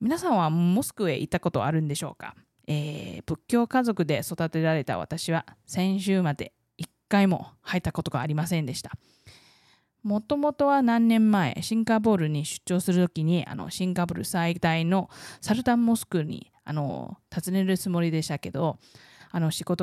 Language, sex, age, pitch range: Japanese, female, 20-39, 160-200 Hz